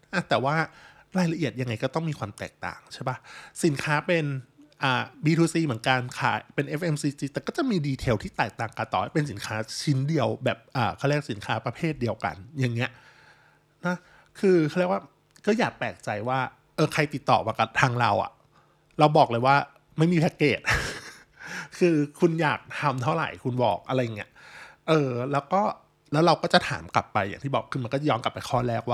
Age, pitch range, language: 20-39, 120-155 Hz, Thai